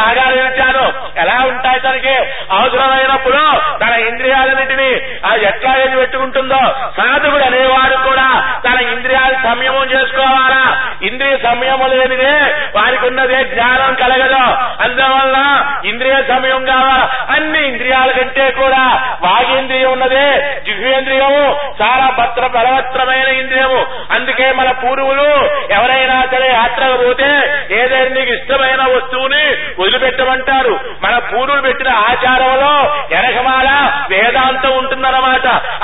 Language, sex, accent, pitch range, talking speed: Telugu, male, native, 255-270 Hz, 85 wpm